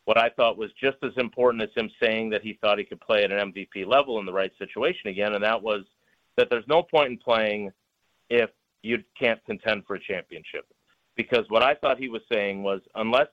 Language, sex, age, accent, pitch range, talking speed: English, male, 50-69, American, 110-140 Hz, 225 wpm